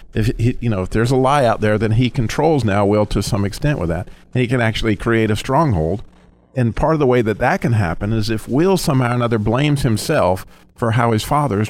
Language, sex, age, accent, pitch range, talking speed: English, male, 50-69, American, 100-130 Hz, 250 wpm